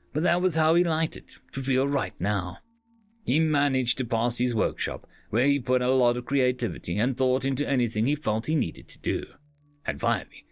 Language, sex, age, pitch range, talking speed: English, male, 30-49, 110-160 Hz, 205 wpm